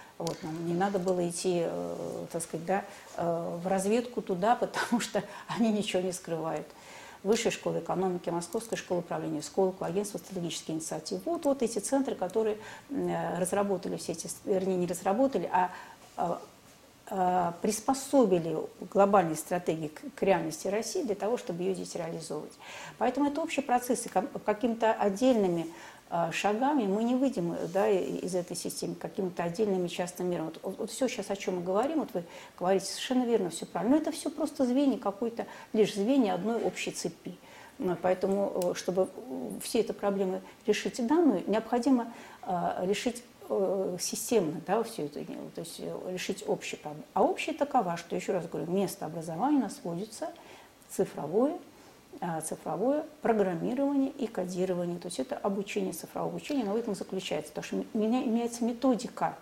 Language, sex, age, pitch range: Russian, female, 40-59, 180-235 Hz